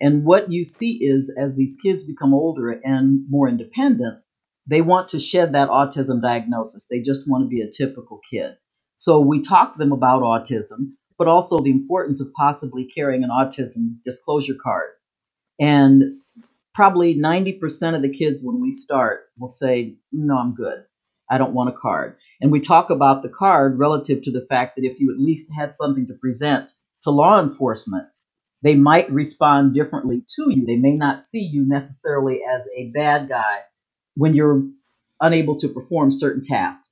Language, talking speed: English, 180 wpm